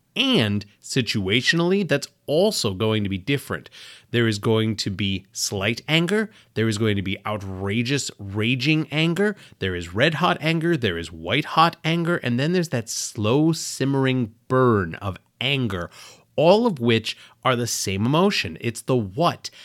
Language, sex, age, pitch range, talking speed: English, male, 30-49, 110-150 Hz, 150 wpm